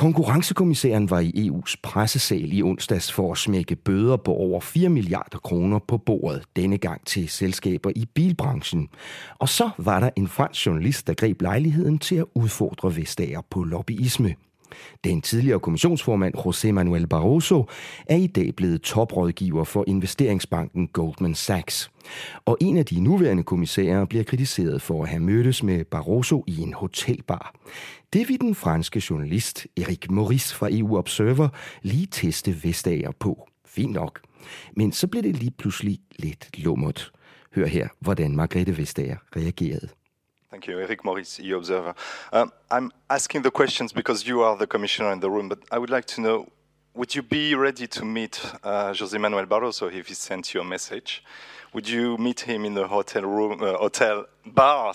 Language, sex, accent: English, male, Danish